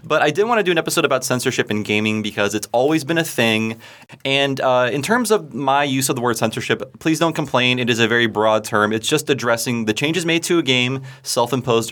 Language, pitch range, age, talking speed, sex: English, 105-135 Hz, 30-49, 240 wpm, male